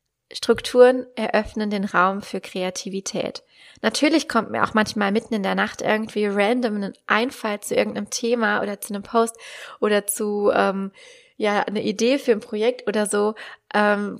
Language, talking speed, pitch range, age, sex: German, 160 wpm, 210-240 Hz, 20-39, female